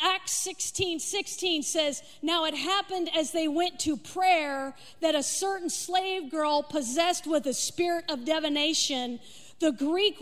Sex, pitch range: female, 290-360 Hz